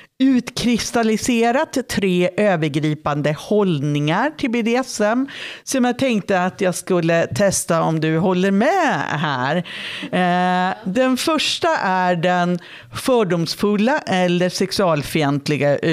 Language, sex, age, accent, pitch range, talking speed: Swedish, female, 50-69, native, 155-210 Hz, 95 wpm